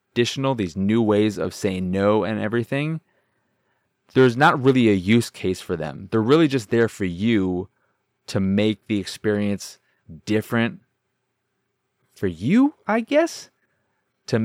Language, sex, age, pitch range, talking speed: English, male, 20-39, 95-120 Hz, 135 wpm